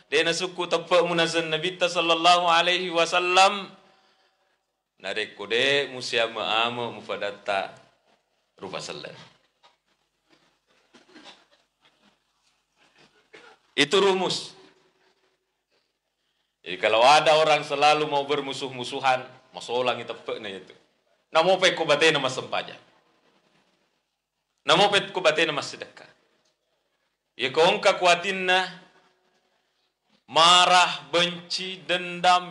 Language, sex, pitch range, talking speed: Indonesian, male, 145-185 Hz, 60 wpm